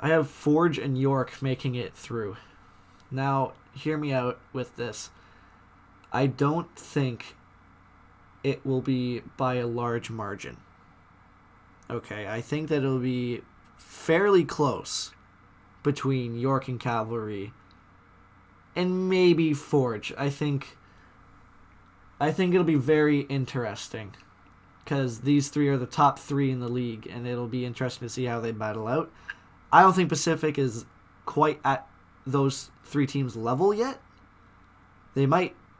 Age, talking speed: 20-39, 140 wpm